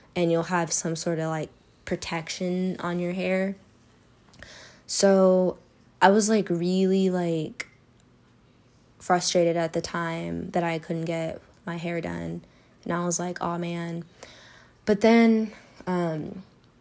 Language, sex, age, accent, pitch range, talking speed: English, female, 10-29, American, 165-180 Hz, 130 wpm